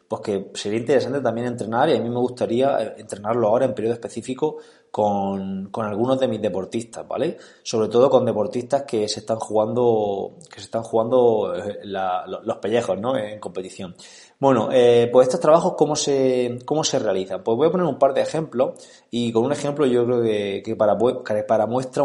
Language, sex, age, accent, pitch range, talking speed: Spanish, male, 20-39, Spanish, 110-145 Hz, 190 wpm